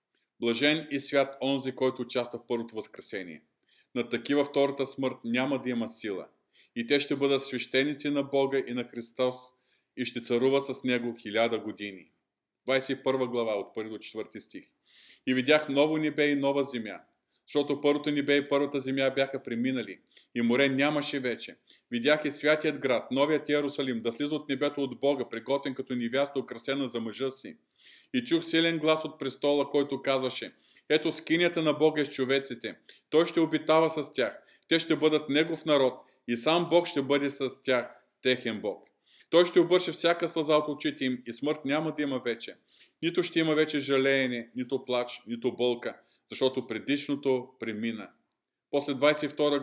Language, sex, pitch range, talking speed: Bulgarian, male, 125-150 Hz, 170 wpm